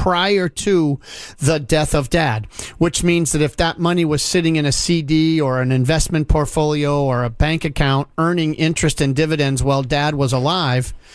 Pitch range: 140-170 Hz